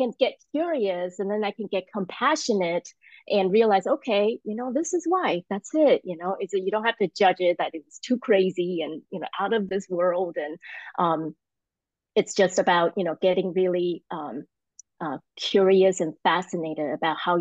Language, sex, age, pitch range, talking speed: English, female, 30-49, 165-215 Hz, 190 wpm